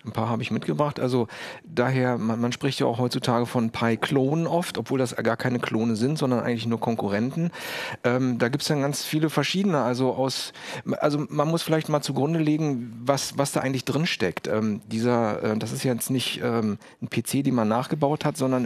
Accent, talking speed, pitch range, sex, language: German, 205 wpm, 115-140 Hz, male, German